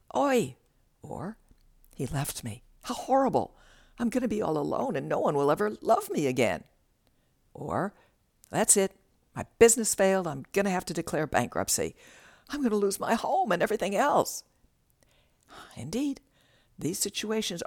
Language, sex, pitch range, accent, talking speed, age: English, female, 135-200 Hz, American, 155 wpm, 60-79